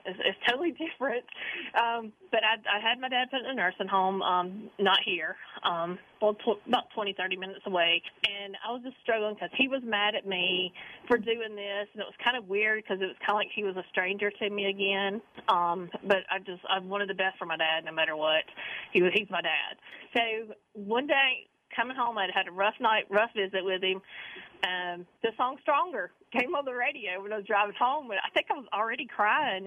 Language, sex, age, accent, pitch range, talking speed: English, female, 40-59, American, 190-240 Hz, 210 wpm